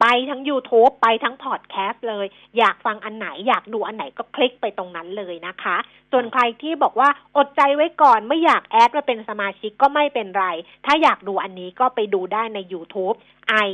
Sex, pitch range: female, 190-255 Hz